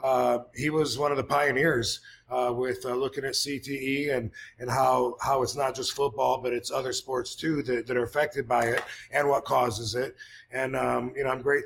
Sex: male